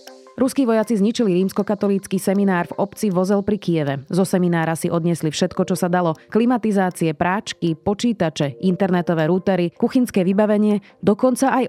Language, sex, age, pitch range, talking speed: Slovak, female, 30-49, 170-205 Hz, 140 wpm